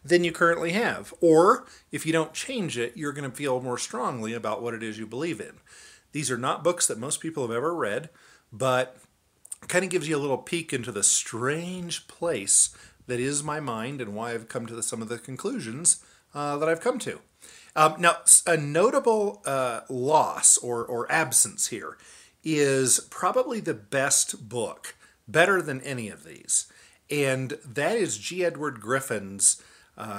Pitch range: 115-155 Hz